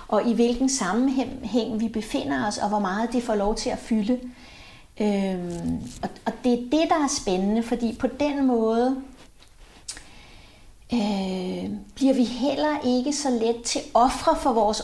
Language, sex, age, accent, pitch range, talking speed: Danish, female, 40-59, native, 220-255 Hz, 160 wpm